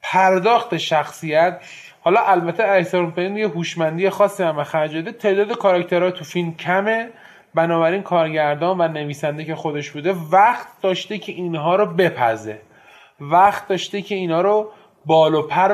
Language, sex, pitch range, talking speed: Persian, male, 155-205 Hz, 140 wpm